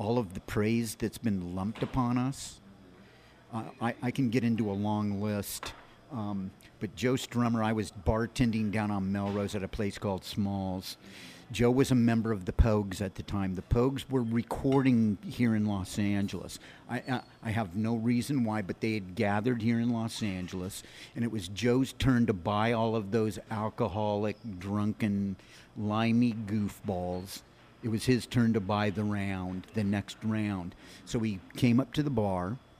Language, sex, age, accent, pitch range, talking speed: English, male, 50-69, American, 105-120 Hz, 180 wpm